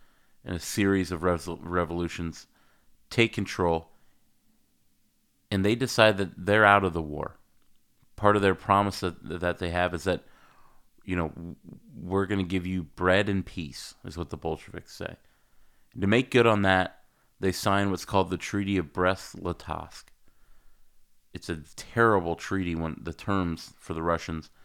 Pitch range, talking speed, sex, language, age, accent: 85-100 Hz, 155 wpm, male, English, 30-49, American